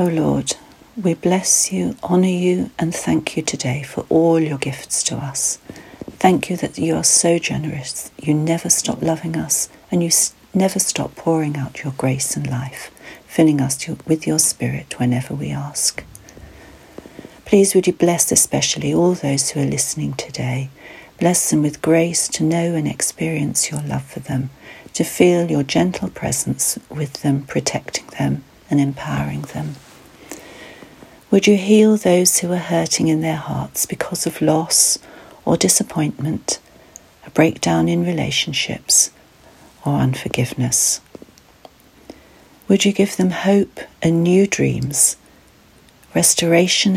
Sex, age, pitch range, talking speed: female, 60-79, 130-175 Hz, 145 wpm